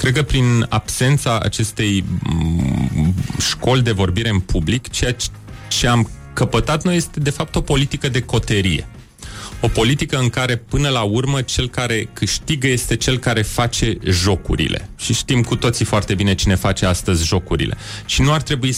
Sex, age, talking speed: male, 30-49, 165 wpm